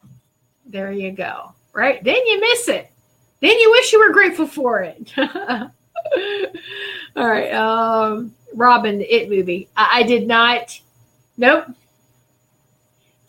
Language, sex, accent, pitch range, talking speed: English, female, American, 205-315 Hz, 125 wpm